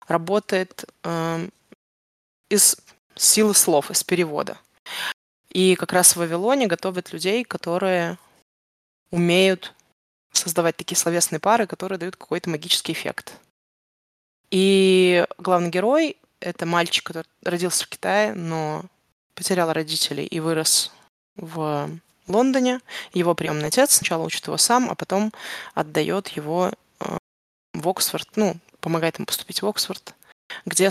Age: 20-39